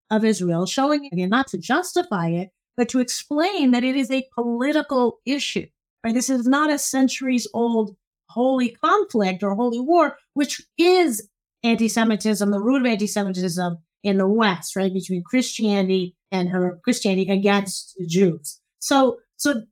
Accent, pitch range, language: American, 200-255 Hz, English